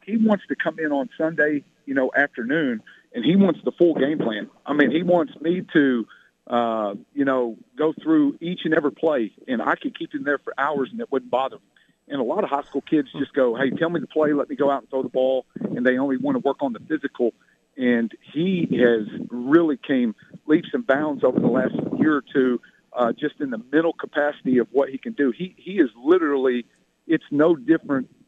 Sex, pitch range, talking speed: male, 130-175 Hz, 230 wpm